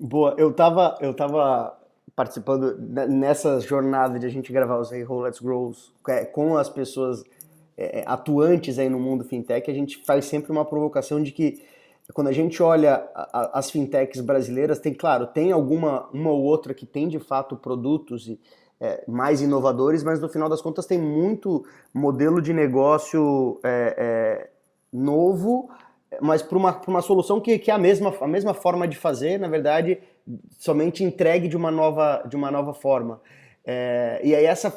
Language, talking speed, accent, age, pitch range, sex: Portuguese, 180 wpm, Brazilian, 20-39, 135-170 Hz, male